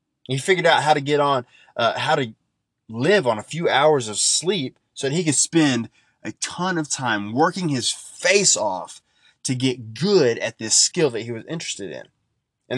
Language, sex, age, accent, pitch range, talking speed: English, male, 20-39, American, 110-140 Hz, 195 wpm